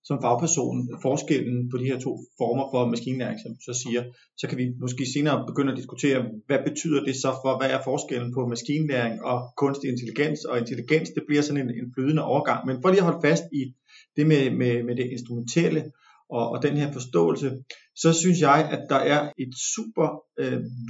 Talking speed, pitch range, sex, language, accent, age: 200 wpm, 125-155 Hz, male, Danish, native, 30-49